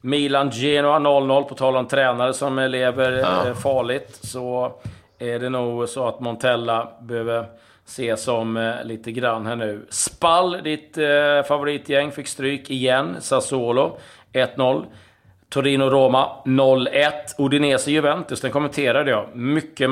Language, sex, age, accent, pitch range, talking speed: Swedish, male, 30-49, native, 115-135 Hz, 125 wpm